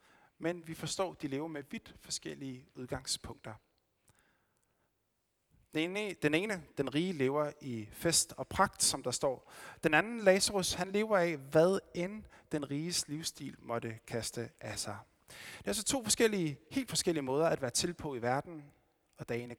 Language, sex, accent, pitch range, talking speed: Danish, male, native, 120-175 Hz, 170 wpm